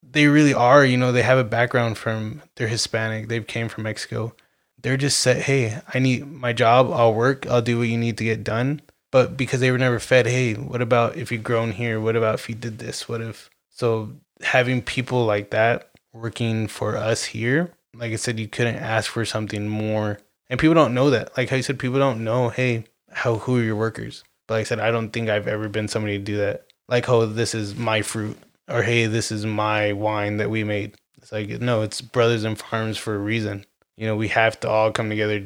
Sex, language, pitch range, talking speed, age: male, English, 110-125 Hz, 235 wpm, 20-39